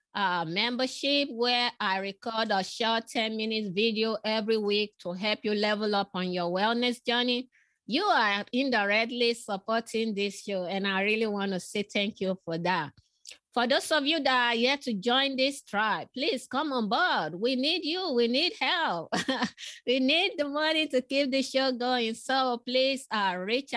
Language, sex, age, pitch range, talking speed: English, female, 20-39, 205-265 Hz, 175 wpm